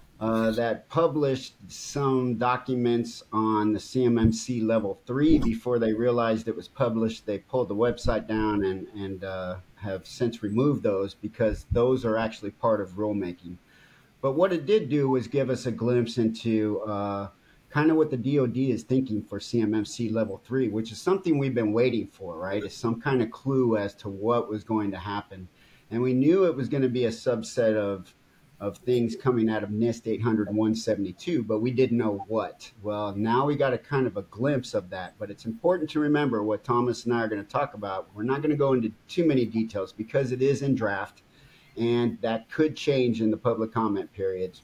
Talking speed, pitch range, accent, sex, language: 195 wpm, 105-130 Hz, American, male, English